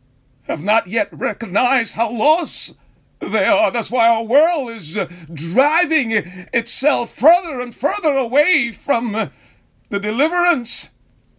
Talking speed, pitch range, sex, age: 115 wpm, 210-290 Hz, male, 50-69